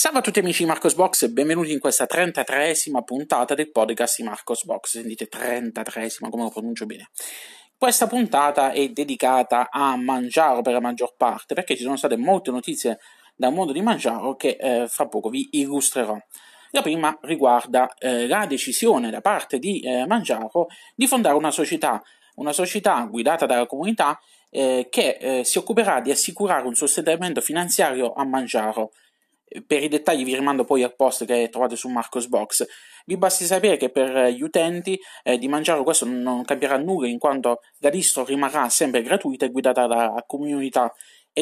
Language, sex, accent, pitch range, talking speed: Italian, male, native, 125-160 Hz, 175 wpm